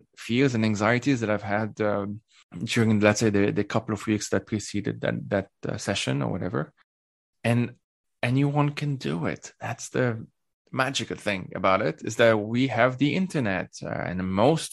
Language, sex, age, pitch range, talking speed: English, male, 20-39, 100-125 Hz, 175 wpm